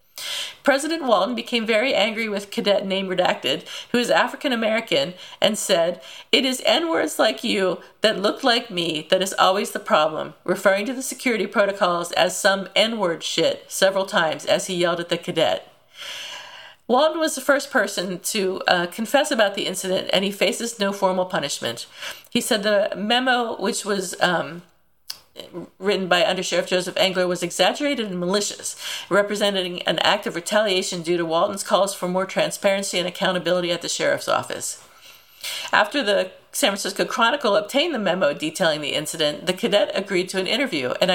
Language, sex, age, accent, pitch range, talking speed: English, female, 50-69, American, 180-230 Hz, 170 wpm